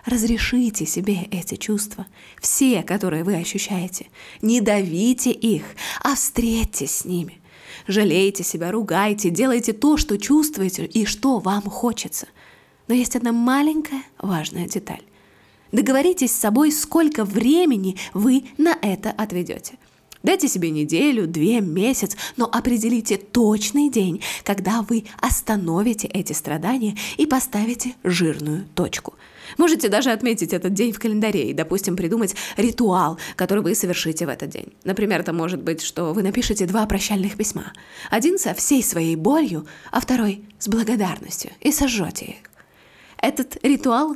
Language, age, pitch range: Russian, 20-39, 180-245 Hz